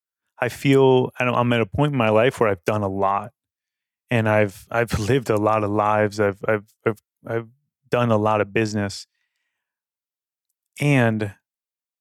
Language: English